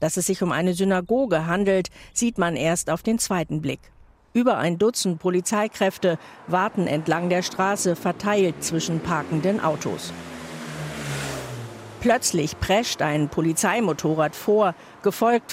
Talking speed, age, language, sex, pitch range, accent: 125 wpm, 50-69, German, female, 165-205 Hz, German